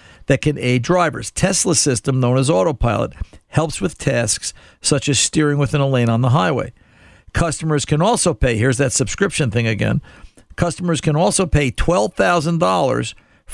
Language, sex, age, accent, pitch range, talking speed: English, male, 50-69, American, 125-165 Hz, 155 wpm